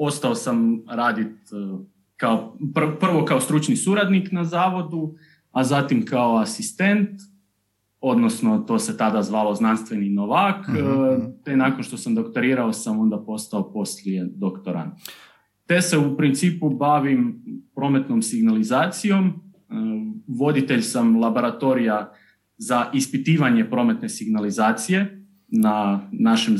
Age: 30-49